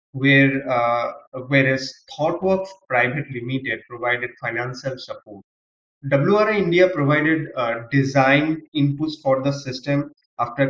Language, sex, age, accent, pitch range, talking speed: English, male, 20-39, Indian, 130-155 Hz, 105 wpm